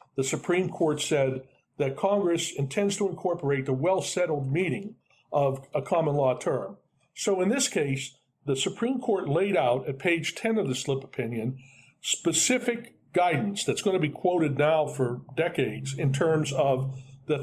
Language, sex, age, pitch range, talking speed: English, male, 50-69, 135-175 Hz, 160 wpm